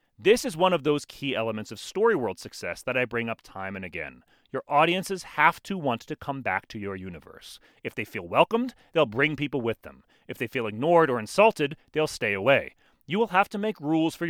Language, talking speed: English, 225 wpm